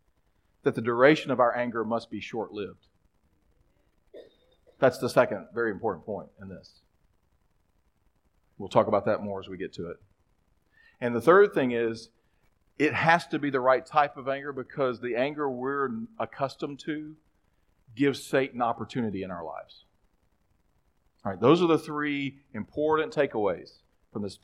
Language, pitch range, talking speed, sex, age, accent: English, 105-150 Hz, 155 wpm, male, 40-59, American